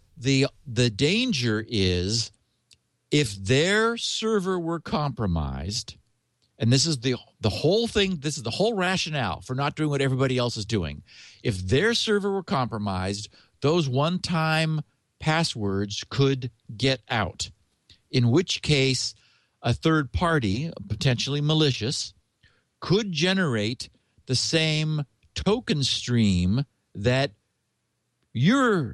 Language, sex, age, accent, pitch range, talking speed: English, male, 50-69, American, 110-160 Hz, 115 wpm